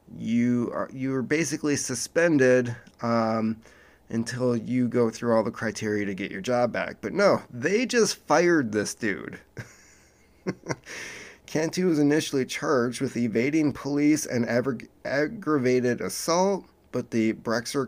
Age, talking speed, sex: 30-49, 135 wpm, male